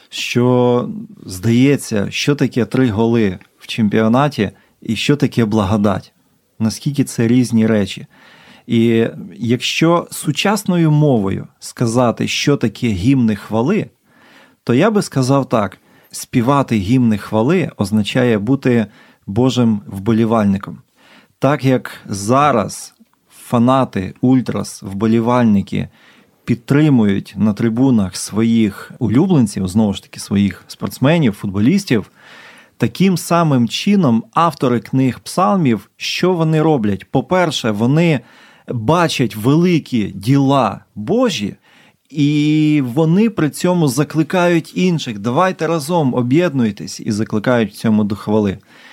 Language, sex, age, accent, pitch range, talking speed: Ukrainian, male, 30-49, native, 110-150 Hz, 105 wpm